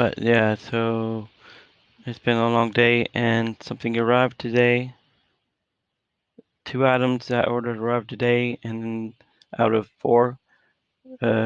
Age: 20-39